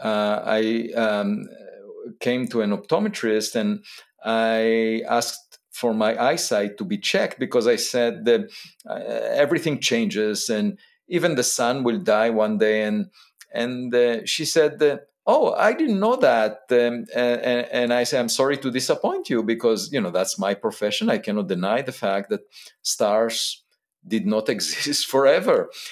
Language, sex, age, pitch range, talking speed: English, male, 50-69, 110-155 Hz, 160 wpm